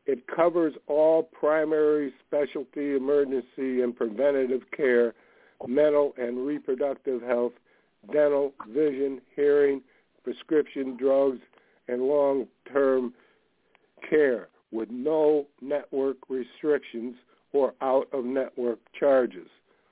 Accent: American